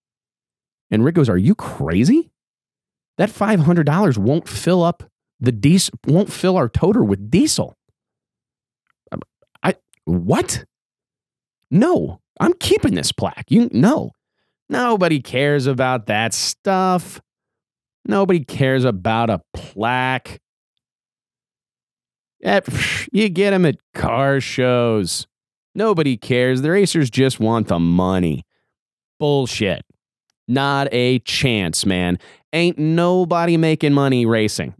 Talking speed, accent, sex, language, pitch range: 110 wpm, American, male, English, 120-170 Hz